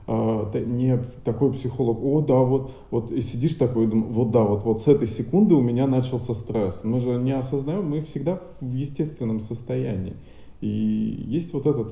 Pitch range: 100-125 Hz